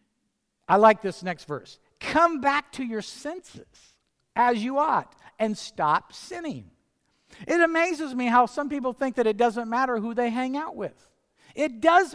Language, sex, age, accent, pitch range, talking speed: English, male, 50-69, American, 215-290 Hz, 170 wpm